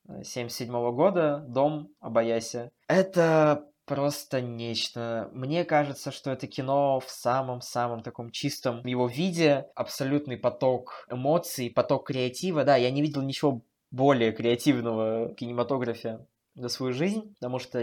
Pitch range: 120-145 Hz